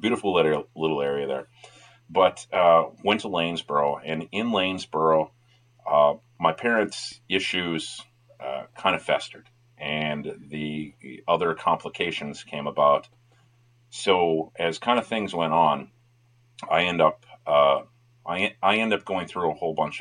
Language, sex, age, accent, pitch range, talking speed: English, male, 40-59, American, 75-120 Hz, 140 wpm